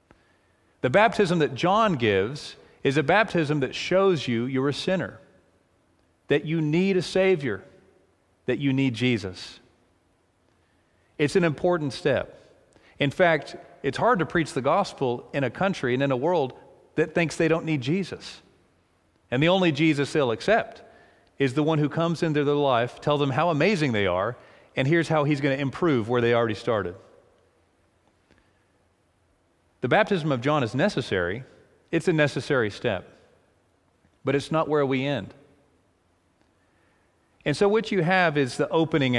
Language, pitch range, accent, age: English, 110-160 Hz, American, 40-59